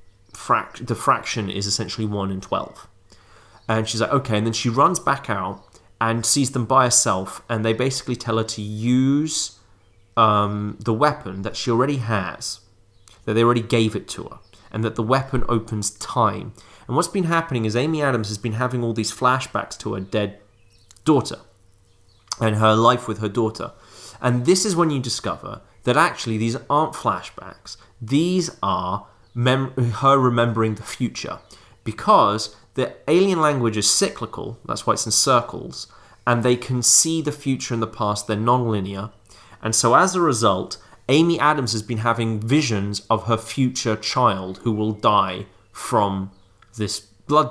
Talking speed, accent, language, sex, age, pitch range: 165 wpm, British, English, male, 30-49, 105-125 Hz